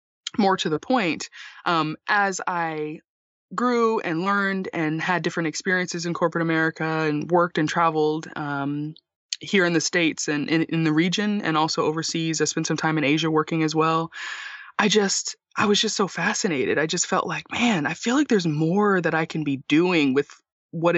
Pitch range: 155-185 Hz